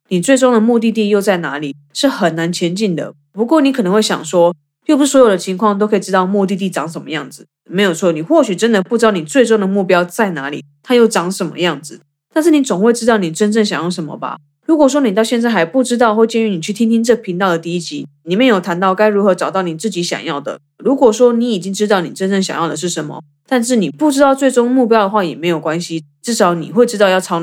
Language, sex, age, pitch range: Chinese, female, 20-39, 170-230 Hz